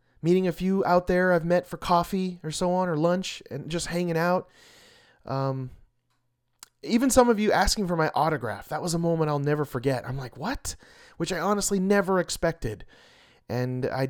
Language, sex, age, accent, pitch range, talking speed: English, male, 30-49, American, 130-185 Hz, 185 wpm